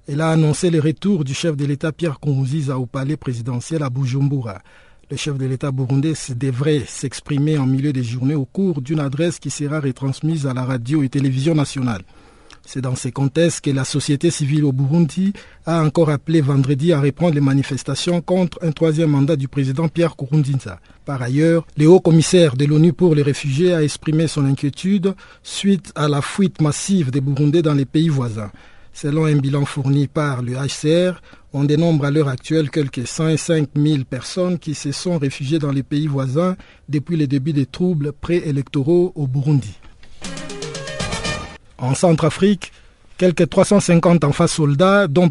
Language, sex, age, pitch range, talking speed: French, male, 50-69, 140-165 Hz, 170 wpm